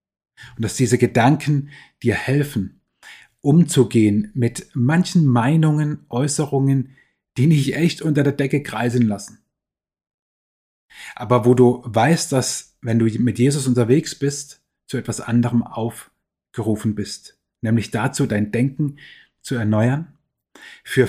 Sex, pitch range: male, 115-145 Hz